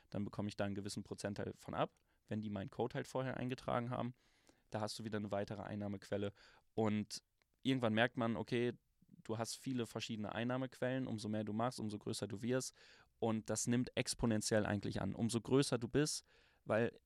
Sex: male